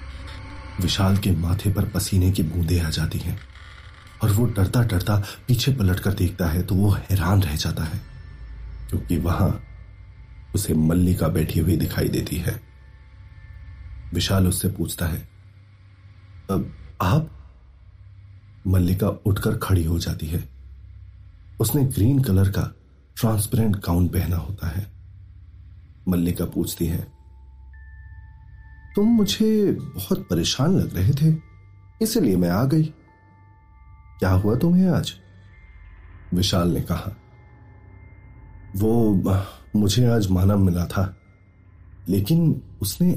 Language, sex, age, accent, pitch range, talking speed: Hindi, male, 40-59, native, 90-105 Hz, 115 wpm